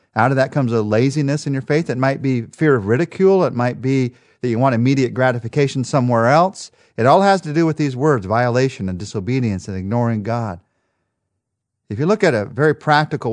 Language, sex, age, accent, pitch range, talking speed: English, male, 40-59, American, 110-150 Hz, 205 wpm